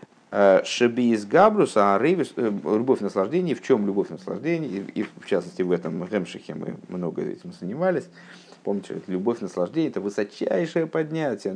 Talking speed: 145 wpm